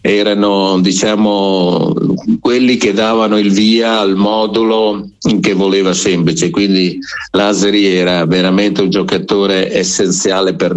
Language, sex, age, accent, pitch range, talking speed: Italian, male, 50-69, native, 90-100 Hz, 110 wpm